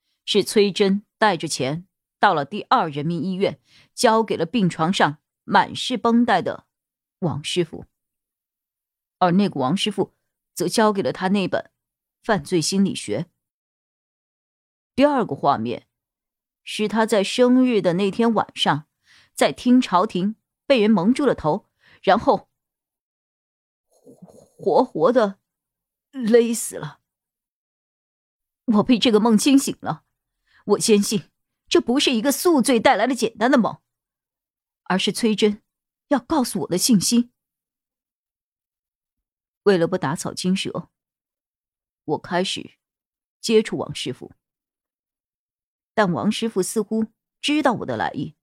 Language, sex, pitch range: Chinese, female, 185-235 Hz